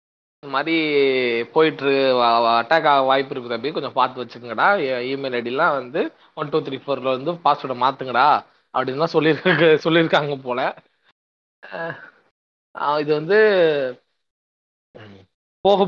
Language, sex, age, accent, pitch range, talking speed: Tamil, male, 20-39, native, 145-185 Hz, 105 wpm